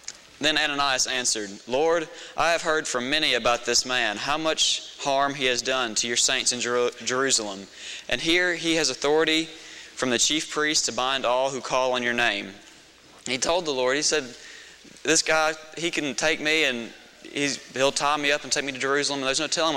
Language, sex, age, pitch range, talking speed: English, male, 20-39, 120-140 Hz, 205 wpm